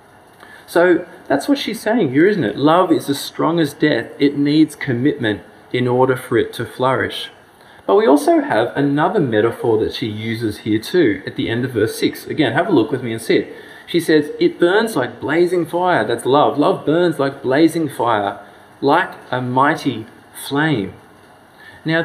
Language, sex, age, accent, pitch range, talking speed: English, male, 20-39, Australian, 120-165 Hz, 185 wpm